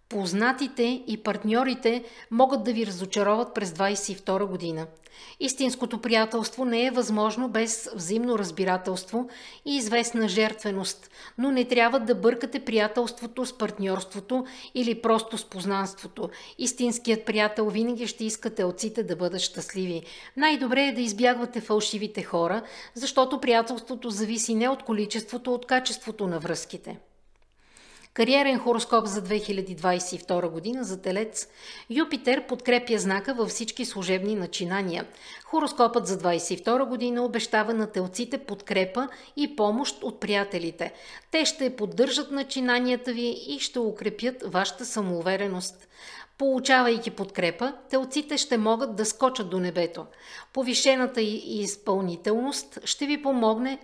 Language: Bulgarian